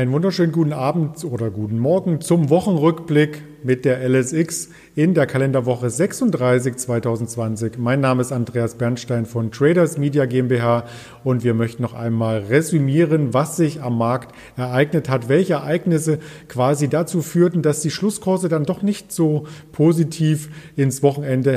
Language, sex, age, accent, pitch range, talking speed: German, male, 40-59, German, 125-155 Hz, 145 wpm